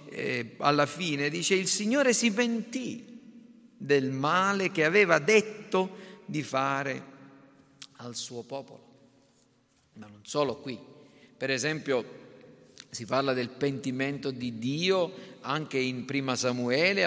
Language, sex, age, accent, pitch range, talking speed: Italian, male, 50-69, native, 135-170 Hz, 115 wpm